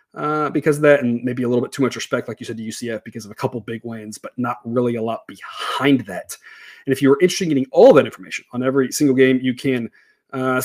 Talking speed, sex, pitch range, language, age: 270 wpm, male, 120-150 Hz, English, 30-49